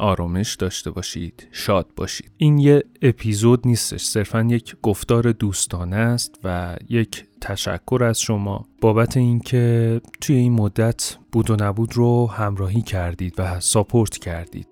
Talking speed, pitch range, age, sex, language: 135 wpm, 95-115 Hz, 30-49, male, Persian